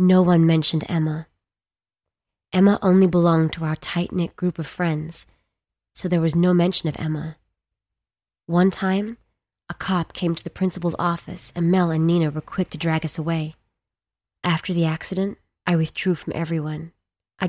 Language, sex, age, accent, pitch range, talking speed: English, female, 20-39, American, 155-180 Hz, 160 wpm